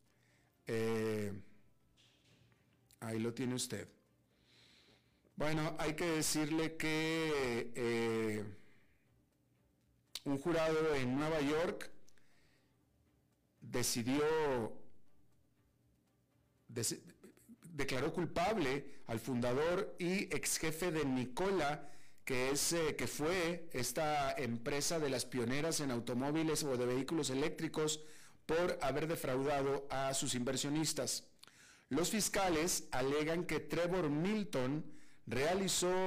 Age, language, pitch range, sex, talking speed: 50-69, Spanish, 125-160 Hz, male, 90 wpm